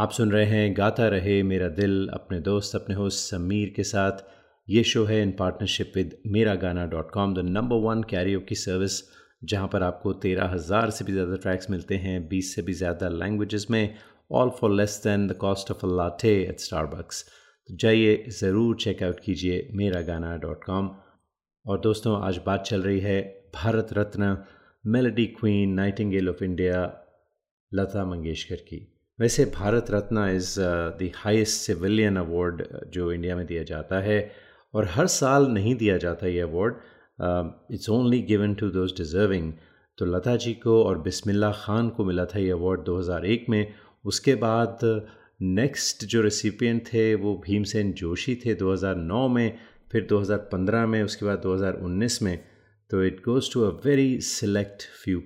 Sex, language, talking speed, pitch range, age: male, Hindi, 165 wpm, 90-110 Hz, 30-49